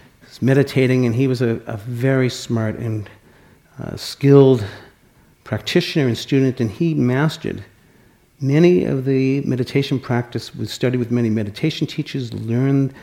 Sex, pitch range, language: male, 110-135 Hz, English